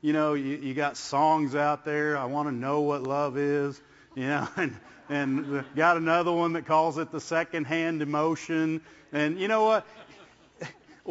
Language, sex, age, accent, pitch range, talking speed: English, male, 50-69, American, 150-200 Hz, 175 wpm